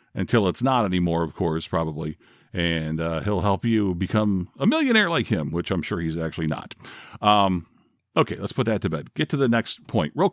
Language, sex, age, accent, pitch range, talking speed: English, male, 50-69, American, 95-140 Hz, 210 wpm